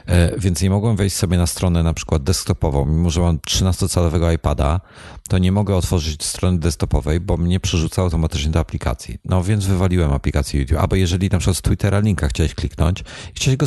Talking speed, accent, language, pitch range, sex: 185 wpm, native, Polish, 80-100 Hz, male